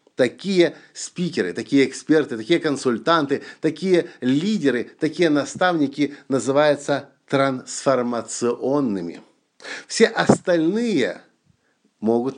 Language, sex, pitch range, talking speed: Russian, male, 125-175 Hz, 75 wpm